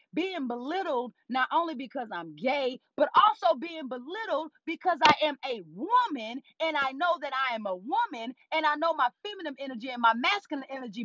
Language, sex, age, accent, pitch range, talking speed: English, female, 30-49, American, 260-345 Hz, 185 wpm